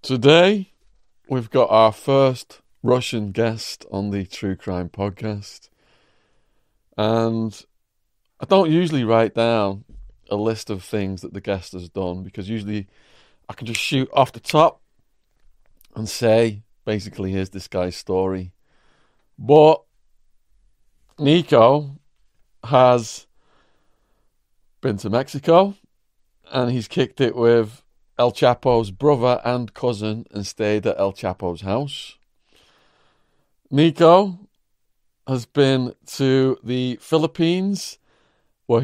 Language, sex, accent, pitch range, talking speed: English, male, British, 105-135 Hz, 110 wpm